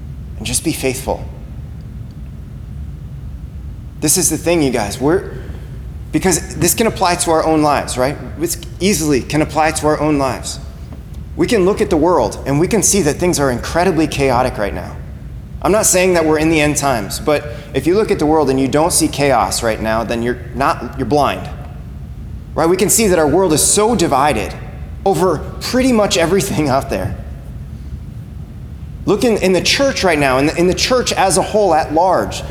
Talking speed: 195 wpm